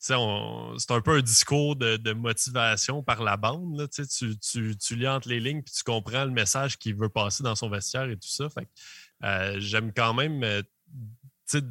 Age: 20-39